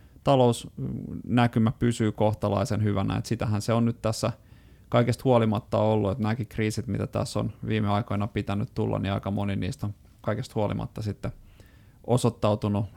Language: Finnish